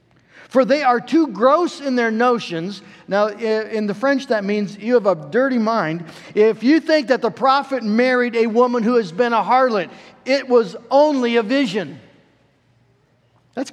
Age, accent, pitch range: 50-69, American, 205-275 Hz